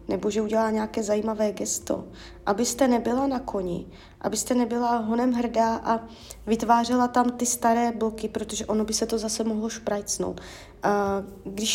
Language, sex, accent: Czech, female, native